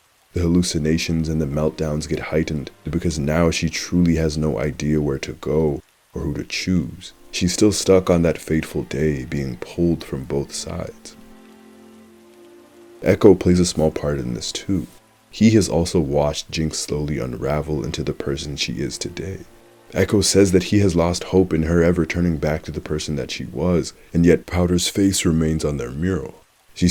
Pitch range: 75-90 Hz